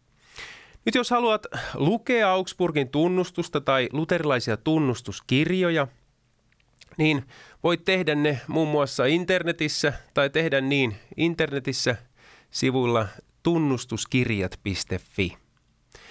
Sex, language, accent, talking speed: male, Finnish, native, 80 wpm